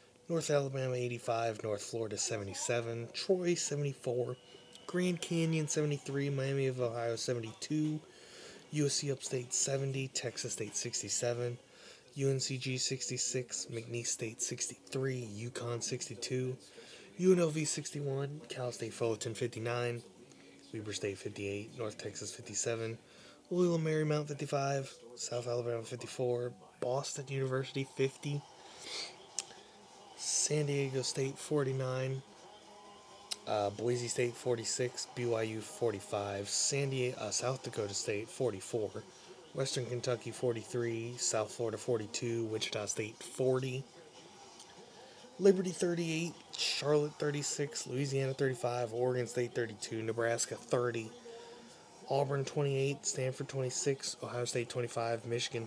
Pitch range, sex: 120-140 Hz, male